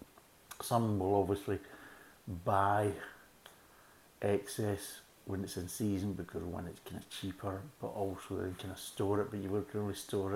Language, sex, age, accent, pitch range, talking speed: English, male, 50-69, British, 95-105 Hz, 160 wpm